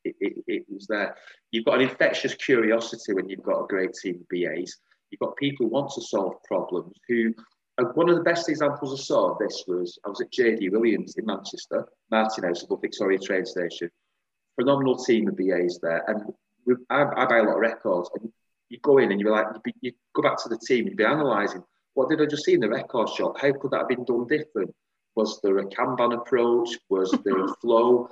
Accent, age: British, 30-49